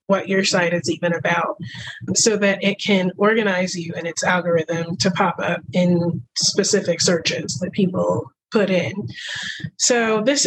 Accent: American